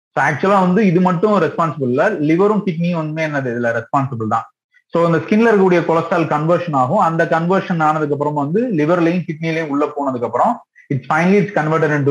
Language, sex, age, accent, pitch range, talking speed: Tamil, male, 30-49, native, 140-185 Hz, 165 wpm